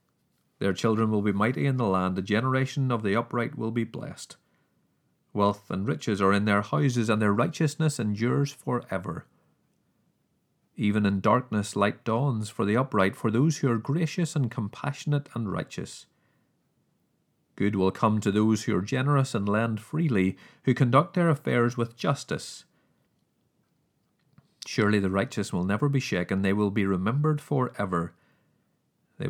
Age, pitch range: 30-49, 100-135 Hz